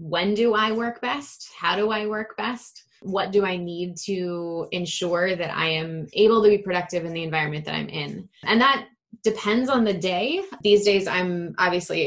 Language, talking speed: English, 195 wpm